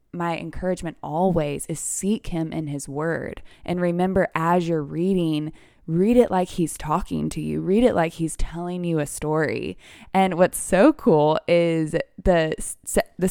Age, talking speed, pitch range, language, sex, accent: 20-39, 160 wpm, 155-185 Hz, English, female, American